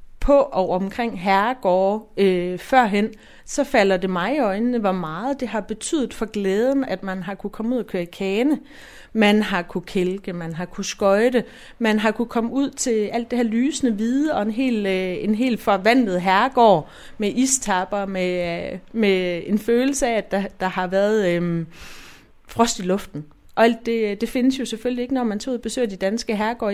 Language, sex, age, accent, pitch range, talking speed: Danish, female, 30-49, native, 190-240 Hz, 200 wpm